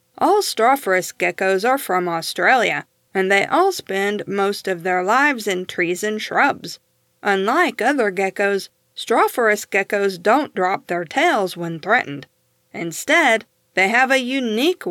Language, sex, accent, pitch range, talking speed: English, female, American, 190-260 Hz, 135 wpm